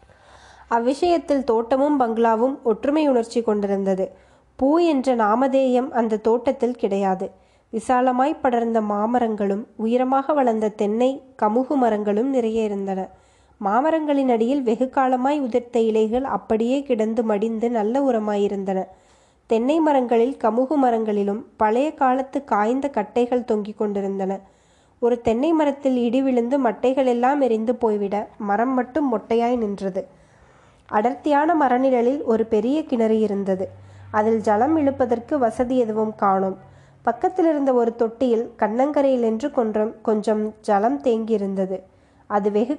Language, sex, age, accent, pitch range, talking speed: Tamil, female, 20-39, native, 215-260 Hz, 110 wpm